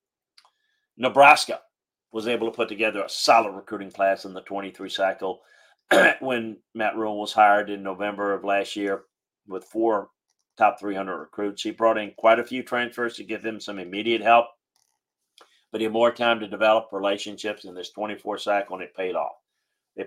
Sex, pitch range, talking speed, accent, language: male, 105-120 Hz, 175 wpm, American, English